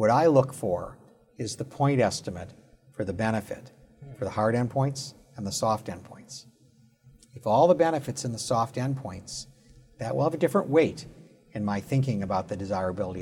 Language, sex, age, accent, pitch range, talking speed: English, male, 50-69, American, 110-145 Hz, 175 wpm